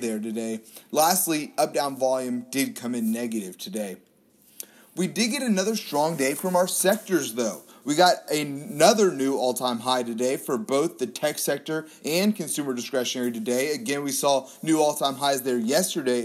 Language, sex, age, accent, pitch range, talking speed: English, male, 30-49, American, 125-165 Hz, 170 wpm